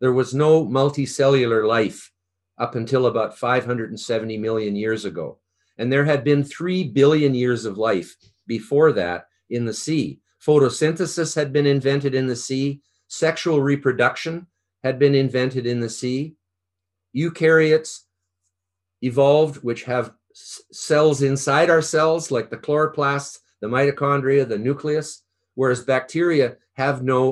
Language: English